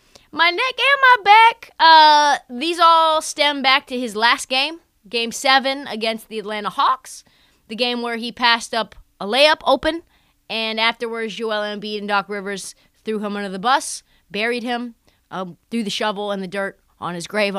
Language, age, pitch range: English, 20-39, 205-265 Hz